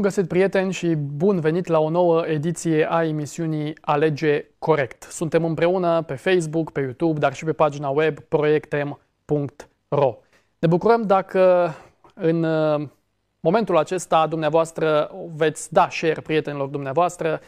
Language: Romanian